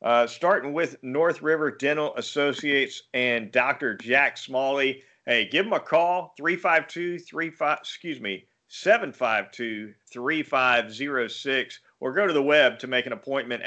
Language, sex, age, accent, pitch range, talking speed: English, male, 40-59, American, 125-145 Hz, 125 wpm